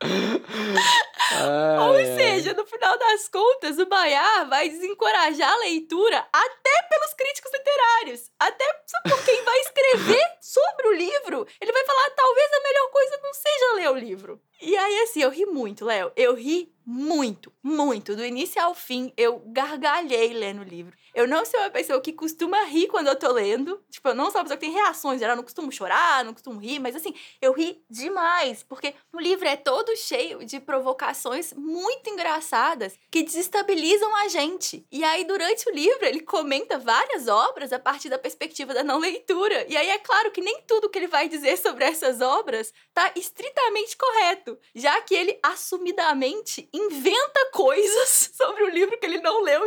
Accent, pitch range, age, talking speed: Brazilian, 275-425 Hz, 20-39, 180 wpm